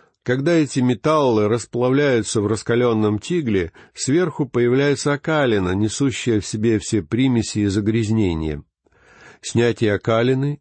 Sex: male